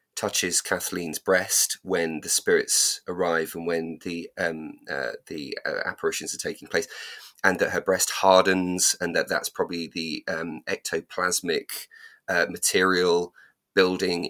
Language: English